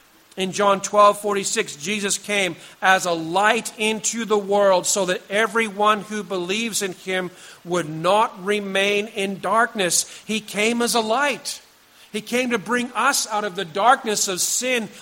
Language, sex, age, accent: English, male, 50-69, American